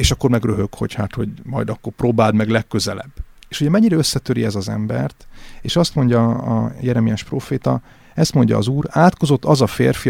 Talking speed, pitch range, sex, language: 190 wpm, 110-145 Hz, male, Hungarian